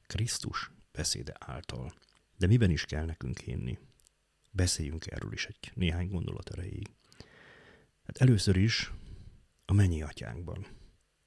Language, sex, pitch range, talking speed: Hungarian, male, 80-100 Hz, 115 wpm